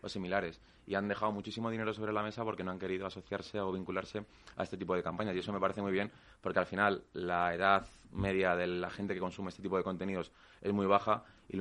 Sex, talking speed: male, 250 wpm